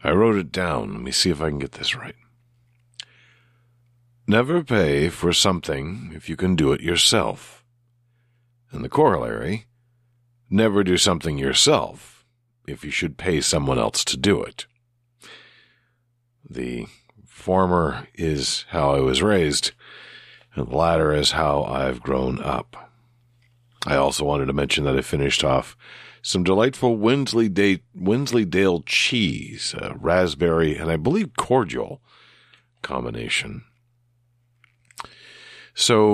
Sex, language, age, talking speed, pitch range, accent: male, English, 50-69, 130 wpm, 80-120 Hz, American